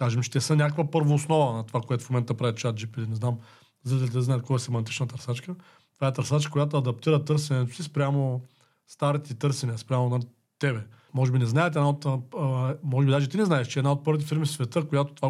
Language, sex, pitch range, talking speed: Bulgarian, male, 130-165 Hz, 230 wpm